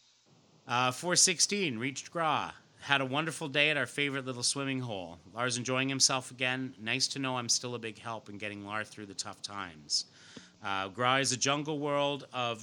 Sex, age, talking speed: male, 30-49, 190 wpm